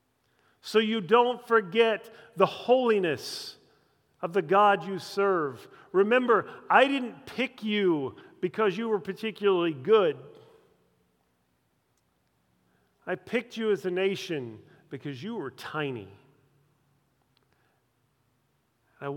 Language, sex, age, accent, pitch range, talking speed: English, male, 40-59, American, 145-215 Hz, 100 wpm